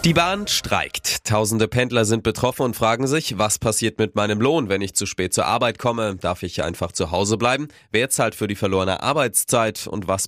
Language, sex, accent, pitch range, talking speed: German, male, German, 90-115 Hz, 210 wpm